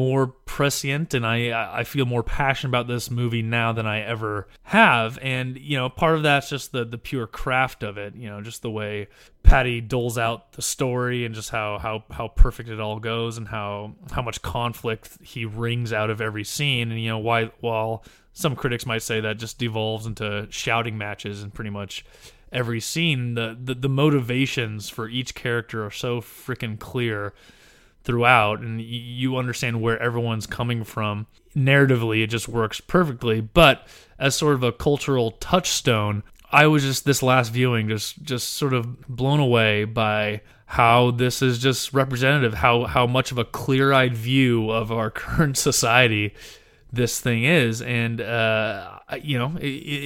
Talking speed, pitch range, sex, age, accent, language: 175 wpm, 110-130 Hz, male, 20-39, American, English